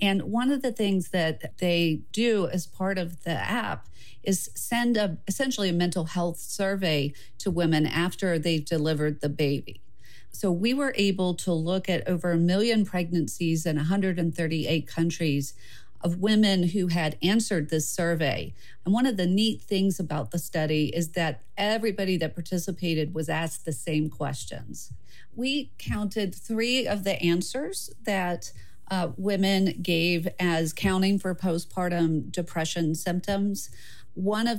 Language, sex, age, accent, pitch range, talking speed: English, female, 40-59, American, 160-190 Hz, 150 wpm